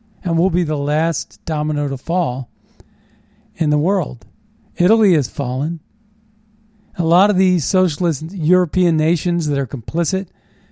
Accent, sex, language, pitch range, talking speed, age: American, male, English, 145-205 Hz, 135 wpm, 40-59